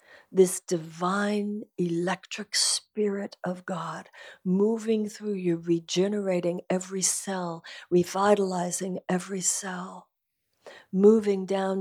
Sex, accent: female, American